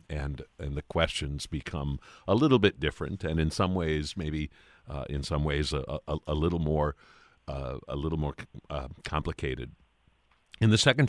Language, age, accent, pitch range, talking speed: English, 50-69, American, 80-105 Hz, 185 wpm